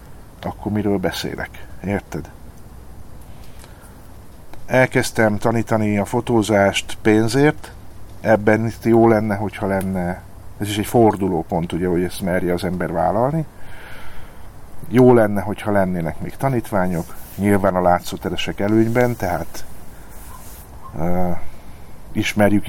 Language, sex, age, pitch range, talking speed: Hungarian, male, 50-69, 90-110 Hz, 105 wpm